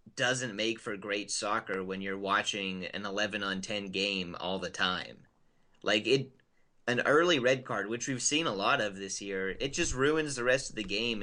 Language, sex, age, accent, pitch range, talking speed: English, male, 30-49, American, 100-125 Hz, 205 wpm